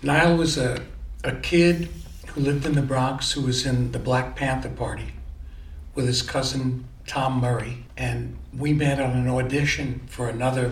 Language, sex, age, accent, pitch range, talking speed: English, male, 60-79, American, 115-135 Hz, 170 wpm